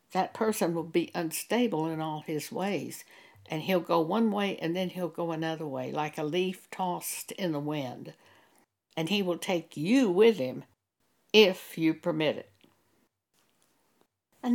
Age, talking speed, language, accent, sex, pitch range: 60-79, 160 wpm, English, American, female, 160-205 Hz